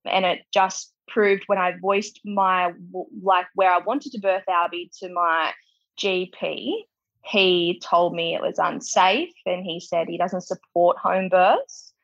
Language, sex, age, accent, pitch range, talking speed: English, female, 20-39, Australian, 175-200 Hz, 160 wpm